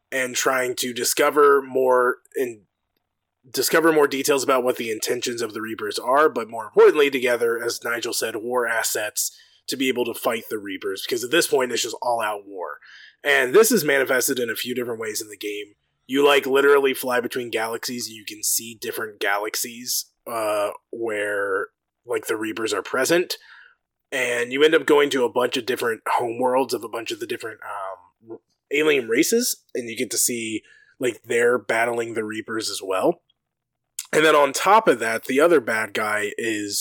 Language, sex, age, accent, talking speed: English, male, 20-39, American, 185 wpm